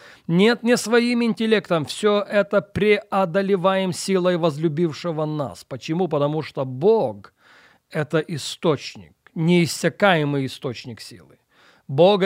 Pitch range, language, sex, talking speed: 135-190 Hz, Russian, male, 100 wpm